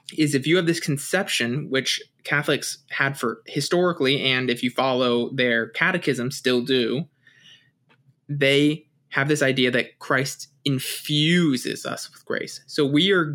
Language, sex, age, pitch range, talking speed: English, male, 20-39, 130-150 Hz, 145 wpm